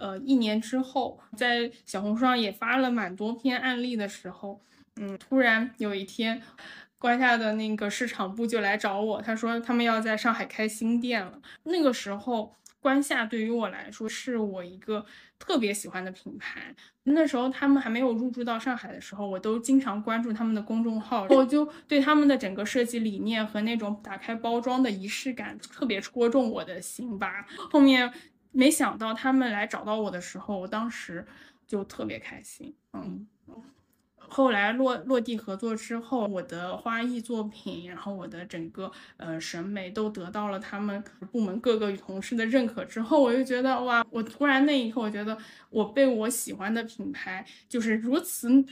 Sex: female